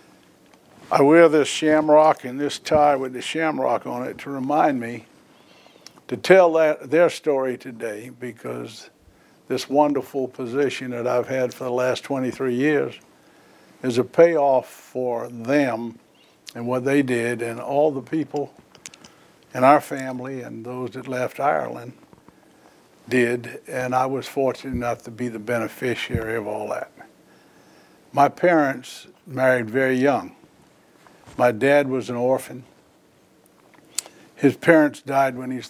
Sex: male